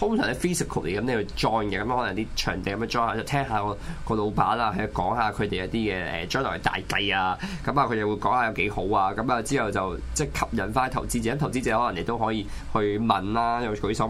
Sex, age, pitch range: male, 20-39, 105-140 Hz